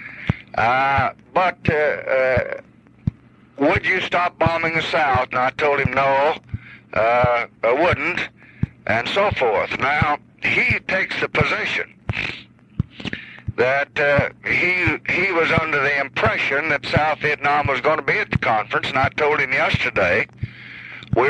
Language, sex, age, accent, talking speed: English, male, 50-69, American, 140 wpm